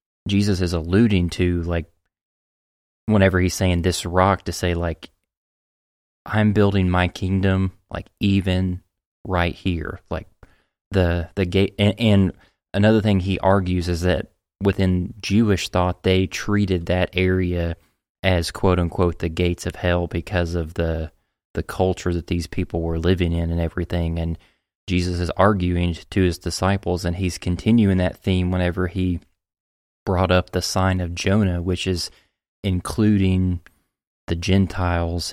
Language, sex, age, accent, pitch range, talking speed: English, male, 20-39, American, 85-95 Hz, 145 wpm